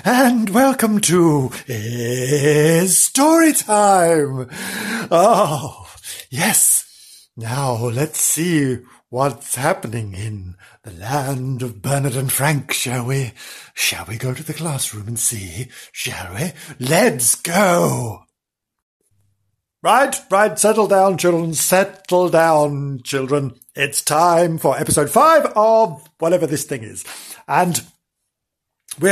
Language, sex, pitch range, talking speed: English, male, 130-180 Hz, 110 wpm